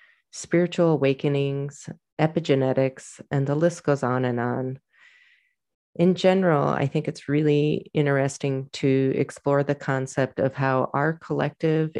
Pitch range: 135-160 Hz